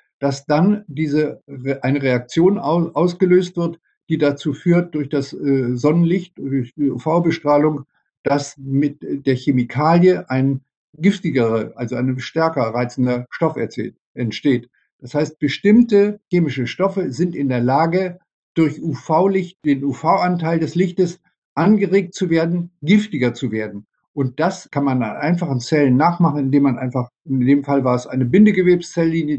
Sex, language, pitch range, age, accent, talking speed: male, German, 130-175 Hz, 50-69, German, 135 wpm